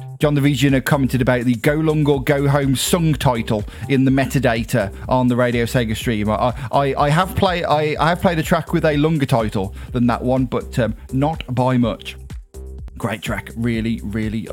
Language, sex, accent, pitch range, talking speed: English, male, British, 120-160 Hz, 200 wpm